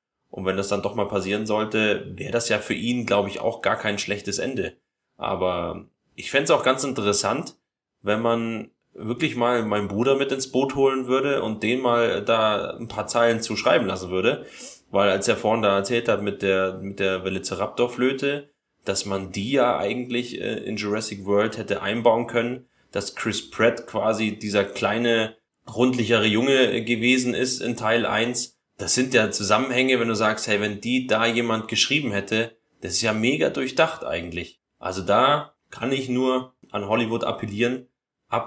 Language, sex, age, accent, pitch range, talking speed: German, male, 20-39, German, 100-120 Hz, 180 wpm